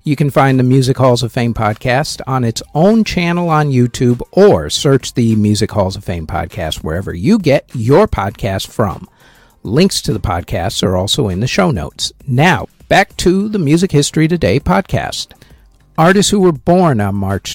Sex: male